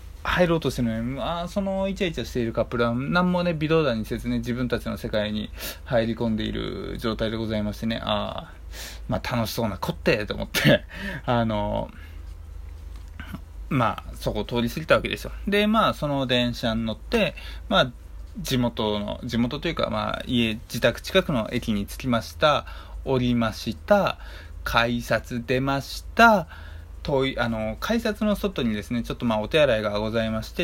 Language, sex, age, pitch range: Japanese, male, 20-39, 105-135 Hz